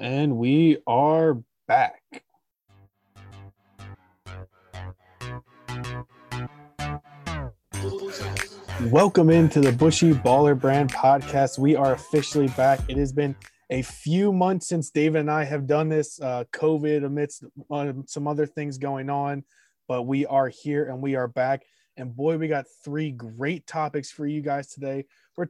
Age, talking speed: 20-39, 135 wpm